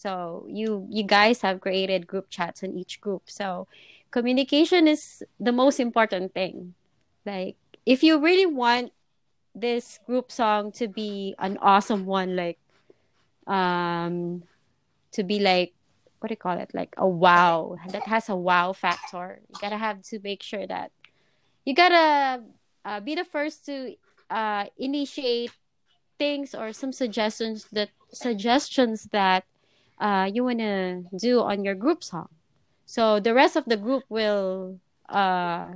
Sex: female